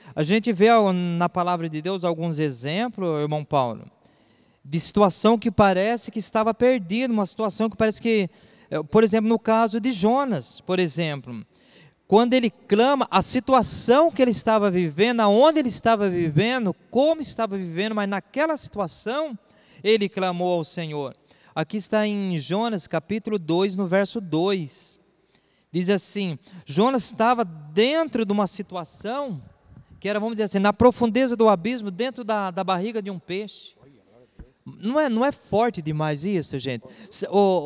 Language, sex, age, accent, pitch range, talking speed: Portuguese, male, 20-39, Brazilian, 175-225 Hz, 155 wpm